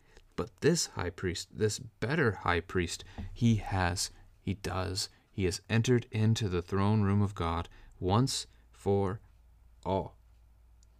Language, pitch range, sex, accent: English, 85-105 Hz, male, American